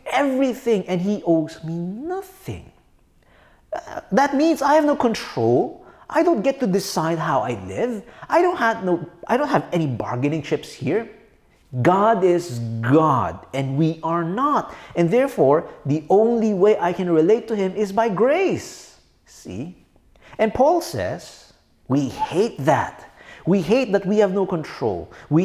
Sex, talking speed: male, 160 wpm